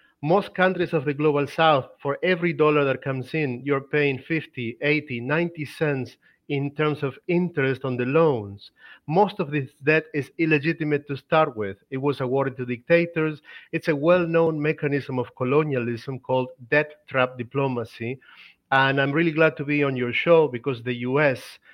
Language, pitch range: English, 125-150 Hz